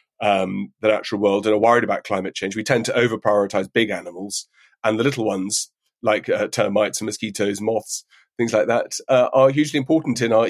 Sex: male